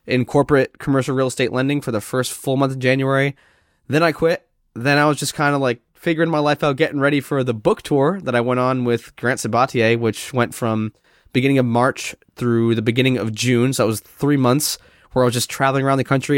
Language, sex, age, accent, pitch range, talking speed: English, male, 20-39, American, 125-155 Hz, 235 wpm